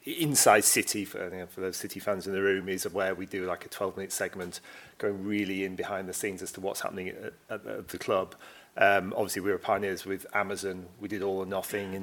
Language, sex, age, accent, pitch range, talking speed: English, male, 40-59, British, 95-110 Hz, 240 wpm